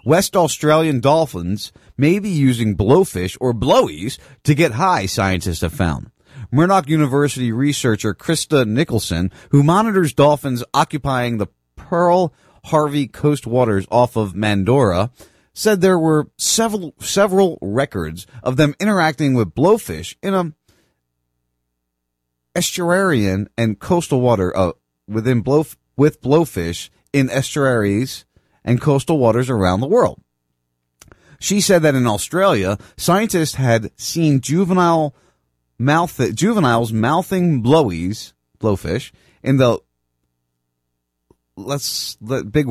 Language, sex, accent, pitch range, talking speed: English, male, American, 100-155 Hz, 110 wpm